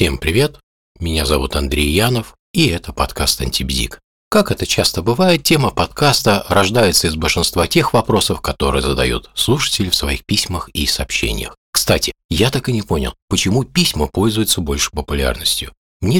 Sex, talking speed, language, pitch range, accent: male, 150 wpm, Russian, 70-115 Hz, native